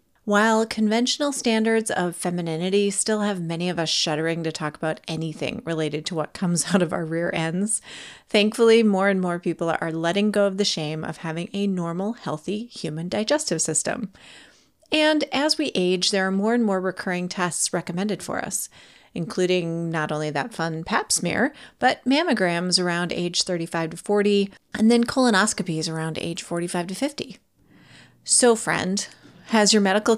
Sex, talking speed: female, 165 wpm